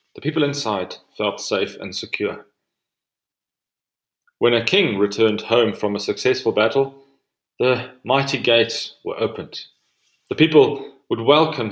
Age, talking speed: 30-49, 130 wpm